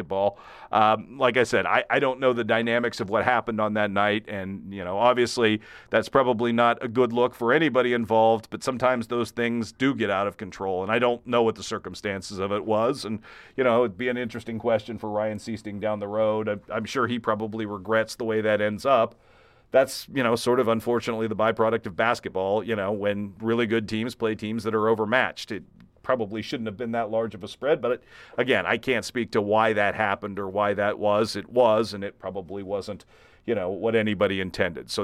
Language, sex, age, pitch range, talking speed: English, male, 40-59, 105-120 Hz, 220 wpm